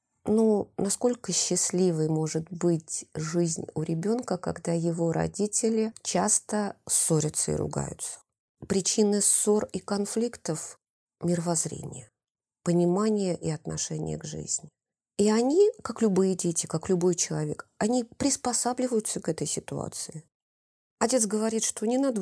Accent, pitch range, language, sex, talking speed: native, 160-220 Hz, Russian, female, 115 wpm